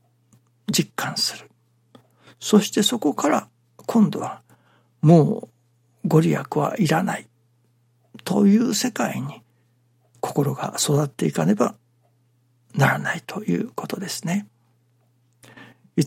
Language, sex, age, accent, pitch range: Japanese, male, 60-79, native, 120-150 Hz